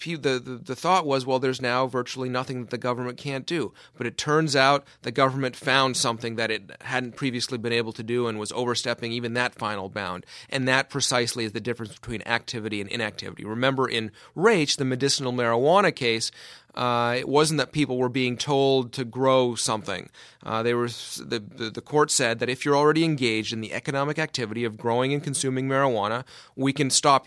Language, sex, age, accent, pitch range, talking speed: English, male, 30-49, American, 115-140 Hz, 200 wpm